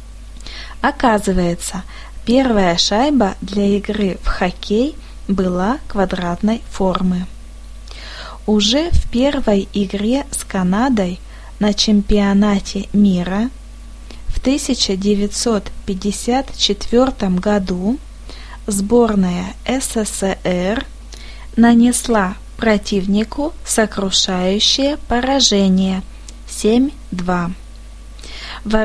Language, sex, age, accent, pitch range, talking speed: Russian, female, 20-39, native, 195-245 Hz, 60 wpm